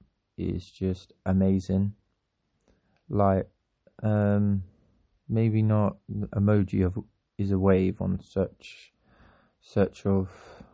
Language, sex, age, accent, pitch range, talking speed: English, male, 20-39, British, 95-105 Hz, 95 wpm